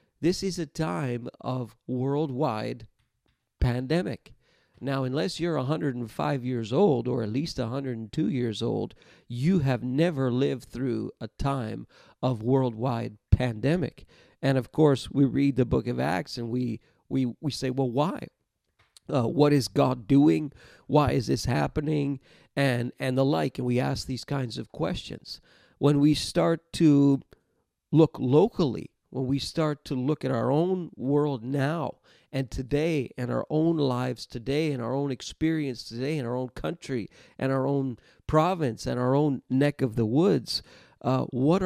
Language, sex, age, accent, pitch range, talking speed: English, male, 50-69, American, 120-150 Hz, 155 wpm